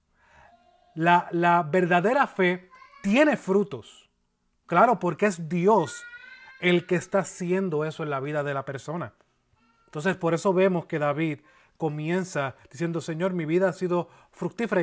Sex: male